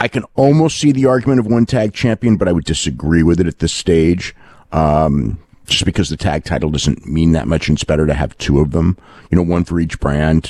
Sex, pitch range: male, 75-100 Hz